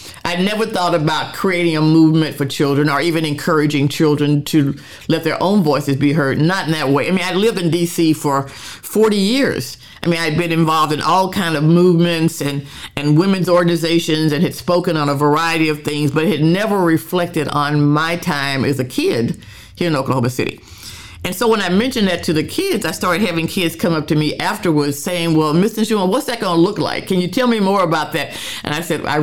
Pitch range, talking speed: 145-180 Hz, 225 wpm